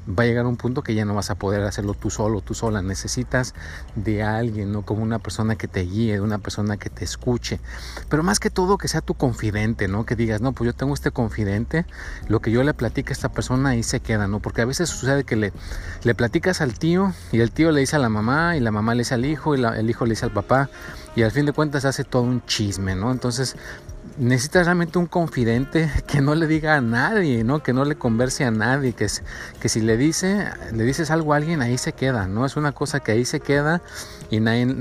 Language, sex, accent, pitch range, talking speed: Spanish, male, Mexican, 105-135 Hz, 250 wpm